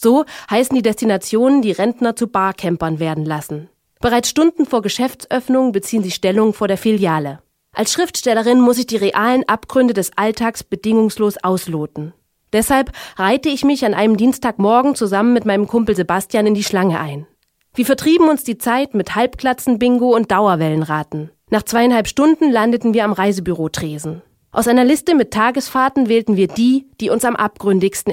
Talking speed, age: 165 wpm, 30-49